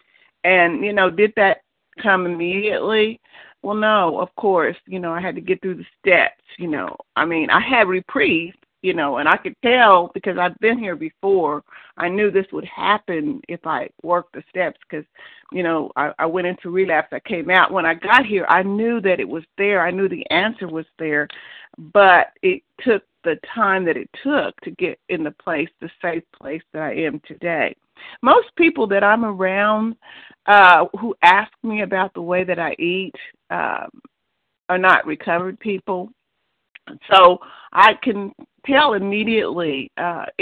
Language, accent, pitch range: English, American, 175-225 Hz